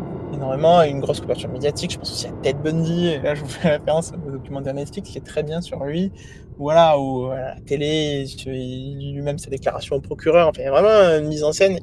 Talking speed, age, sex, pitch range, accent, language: 220 wpm, 20-39, male, 150-205 Hz, French, French